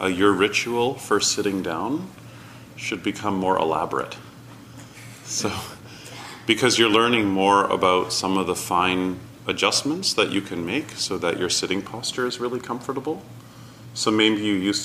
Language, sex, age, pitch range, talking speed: English, male, 30-49, 100-130 Hz, 150 wpm